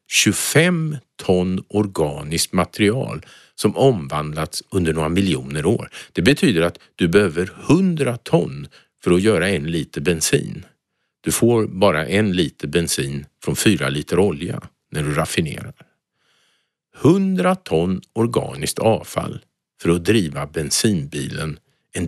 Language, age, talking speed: Swedish, 50-69, 120 wpm